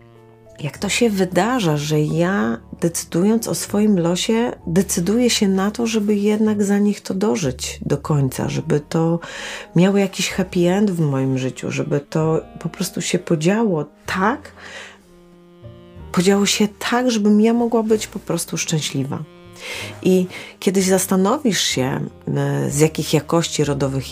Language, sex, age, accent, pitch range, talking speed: Polish, female, 30-49, native, 150-200 Hz, 140 wpm